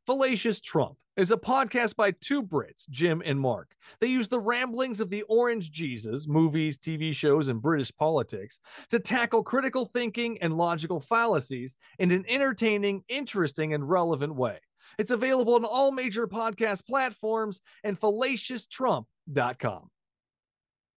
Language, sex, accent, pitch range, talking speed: English, male, American, 170-255 Hz, 135 wpm